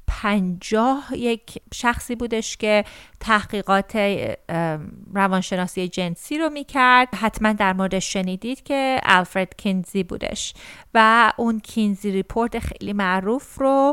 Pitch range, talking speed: 195-235 Hz, 110 wpm